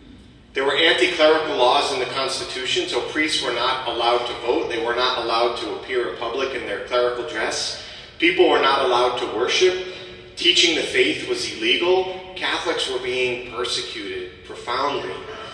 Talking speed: 160 wpm